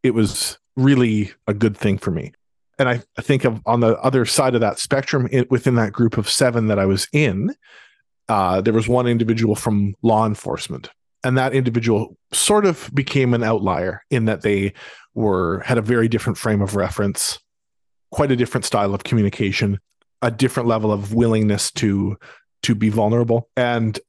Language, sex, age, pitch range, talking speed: English, male, 40-59, 105-130 Hz, 180 wpm